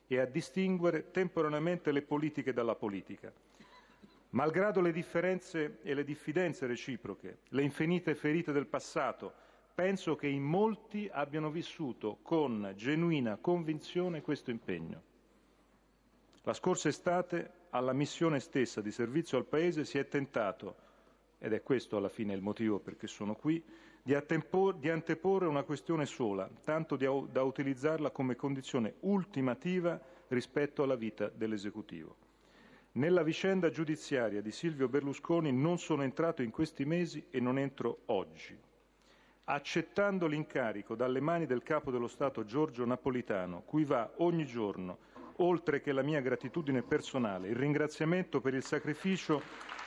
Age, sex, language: 40-59, male, Italian